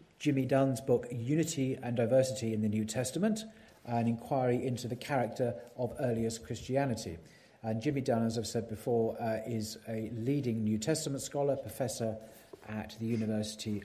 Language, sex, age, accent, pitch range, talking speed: English, male, 40-59, British, 110-145 Hz, 155 wpm